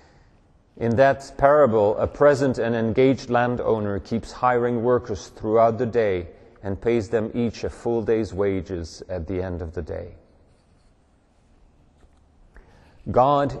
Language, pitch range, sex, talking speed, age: English, 85-115 Hz, male, 130 wpm, 40-59